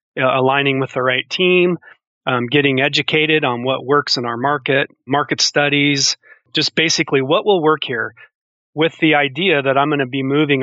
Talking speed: 175 wpm